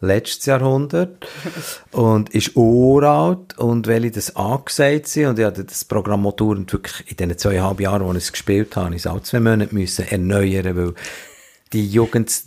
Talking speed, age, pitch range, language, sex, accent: 180 wpm, 50-69, 95-125 Hz, German, male, Austrian